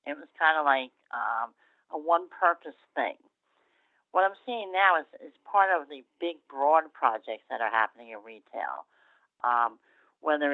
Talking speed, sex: 160 wpm, female